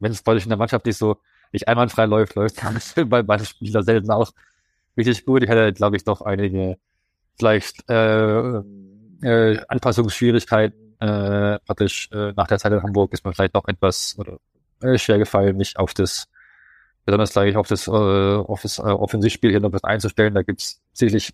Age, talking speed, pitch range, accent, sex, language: 20-39, 195 wpm, 95-110 Hz, German, male, German